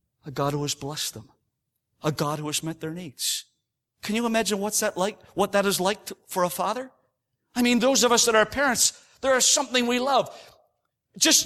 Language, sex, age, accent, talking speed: English, male, 40-59, American, 210 wpm